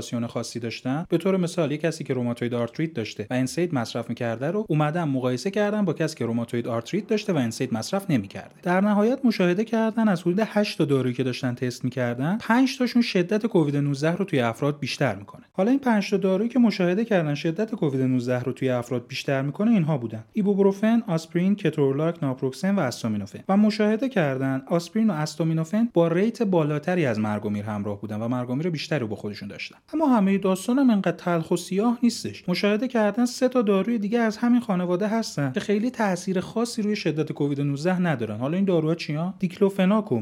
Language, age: Persian, 30-49